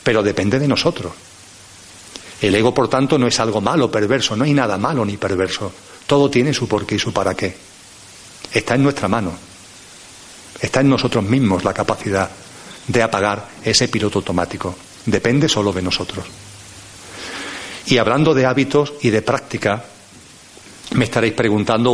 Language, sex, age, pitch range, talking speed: Spanish, male, 40-59, 100-125 Hz, 155 wpm